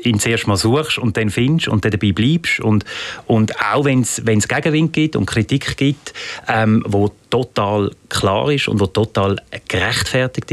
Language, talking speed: German, 170 wpm